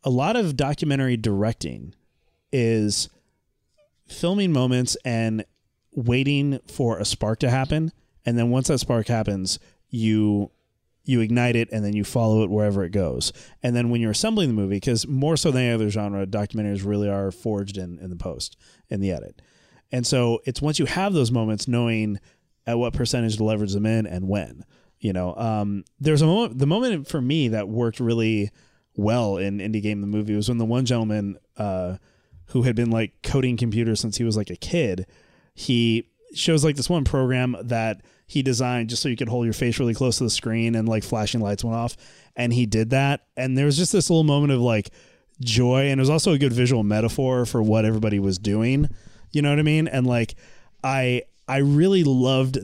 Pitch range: 105-135 Hz